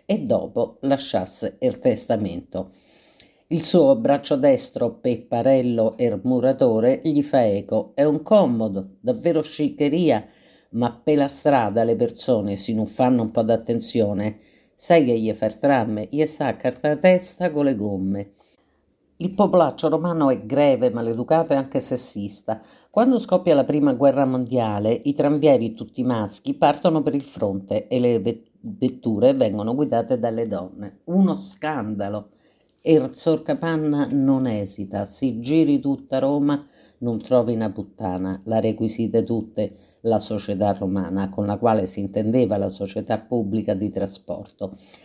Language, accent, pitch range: Italian, native, 110-150 Hz